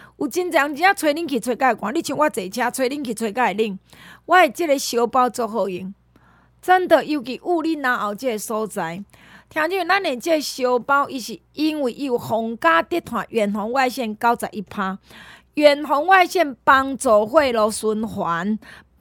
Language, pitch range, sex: Chinese, 215-305 Hz, female